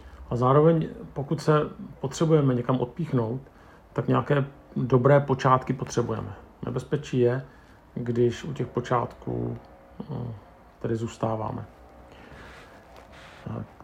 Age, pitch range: 40-59, 120-145 Hz